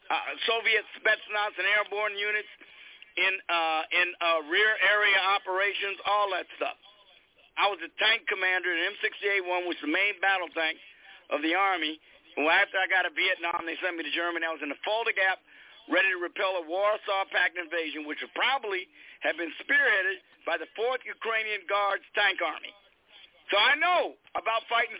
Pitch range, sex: 185-260 Hz, male